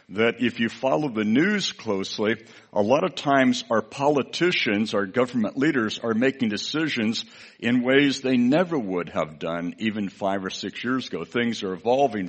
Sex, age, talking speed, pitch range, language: male, 60-79, 170 wpm, 100-130 Hz, English